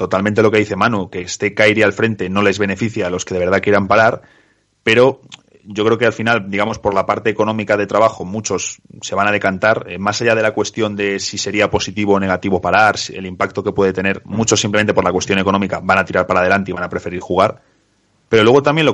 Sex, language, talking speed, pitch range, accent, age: male, Spanish, 245 wpm, 100-115 Hz, Spanish, 30-49